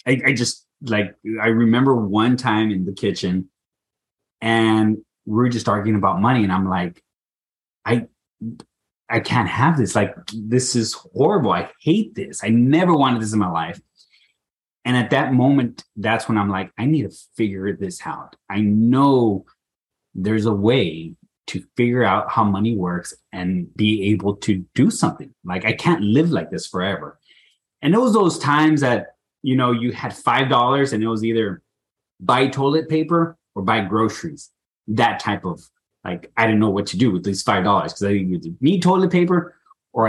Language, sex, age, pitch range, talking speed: English, male, 30-49, 105-135 Hz, 175 wpm